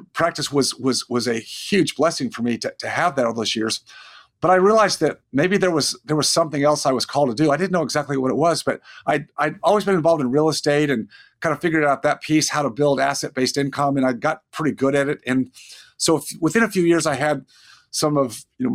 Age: 50-69